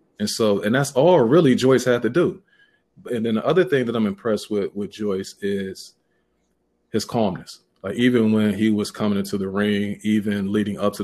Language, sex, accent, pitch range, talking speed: English, male, American, 95-105 Hz, 200 wpm